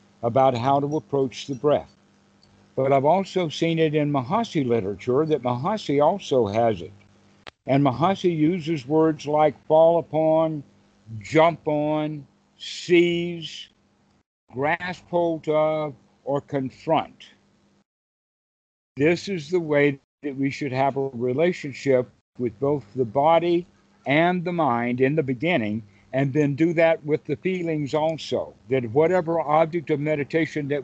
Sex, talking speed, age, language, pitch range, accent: male, 130 wpm, 60-79, English, 130-160 Hz, American